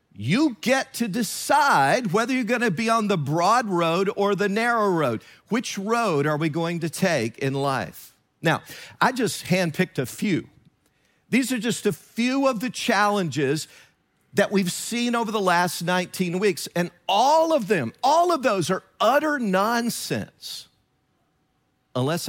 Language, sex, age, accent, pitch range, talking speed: English, male, 50-69, American, 150-205 Hz, 155 wpm